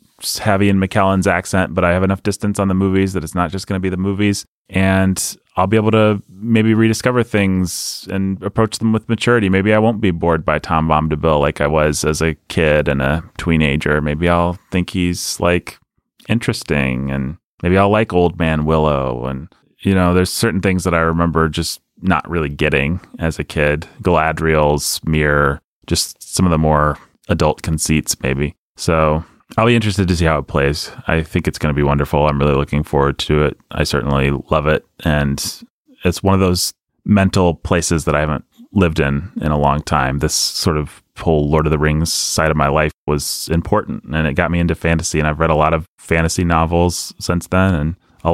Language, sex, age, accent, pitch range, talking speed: English, male, 30-49, American, 75-95 Hz, 205 wpm